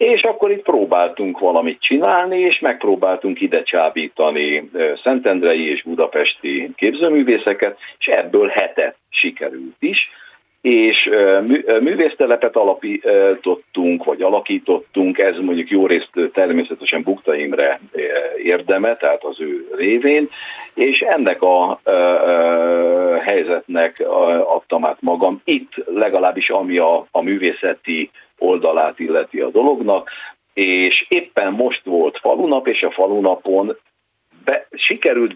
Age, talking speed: 50-69, 105 wpm